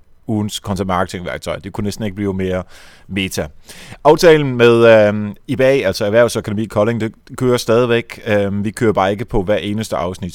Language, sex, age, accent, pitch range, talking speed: Danish, male, 30-49, native, 95-125 Hz, 160 wpm